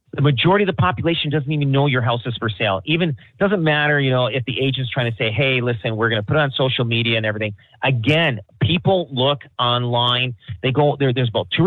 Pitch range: 120-155 Hz